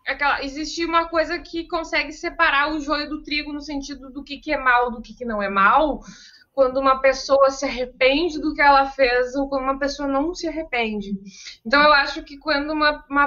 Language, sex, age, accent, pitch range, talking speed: Portuguese, female, 20-39, Brazilian, 230-315 Hz, 215 wpm